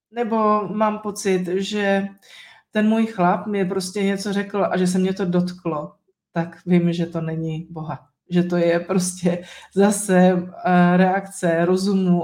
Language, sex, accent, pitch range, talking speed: Czech, female, native, 170-195 Hz, 145 wpm